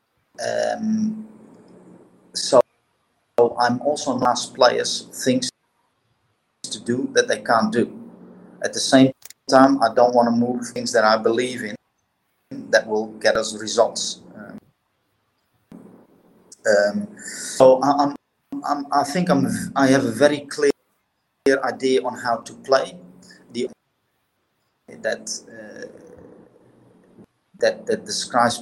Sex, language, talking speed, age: male, English, 125 wpm, 30-49